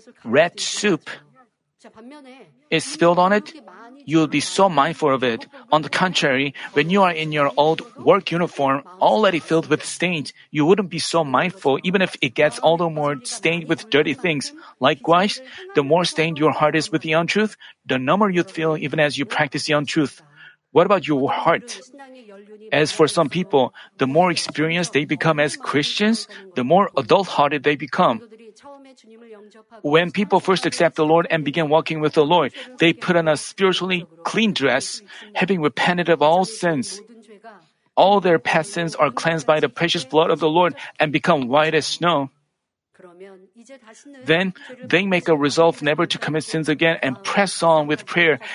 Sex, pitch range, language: male, 155-195 Hz, Korean